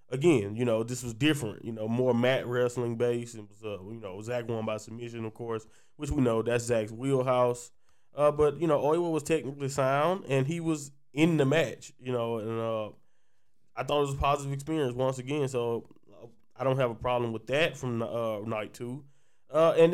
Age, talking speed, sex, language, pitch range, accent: 20-39, 210 wpm, male, English, 120-140 Hz, American